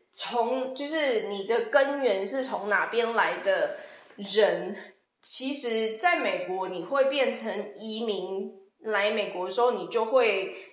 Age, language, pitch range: 20-39, Chinese, 200-295 Hz